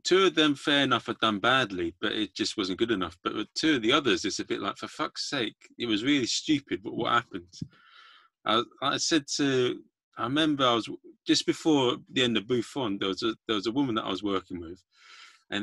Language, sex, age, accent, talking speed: English, male, 30-49, British, 225 wpm